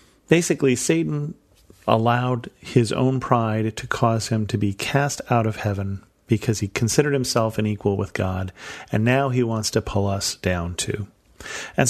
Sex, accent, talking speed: male, American, 165 wpm